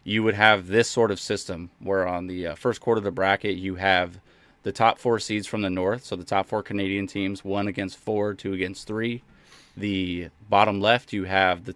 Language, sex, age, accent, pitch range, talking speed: English, male, 20-39, American, 95-115 Hz, 220 wpm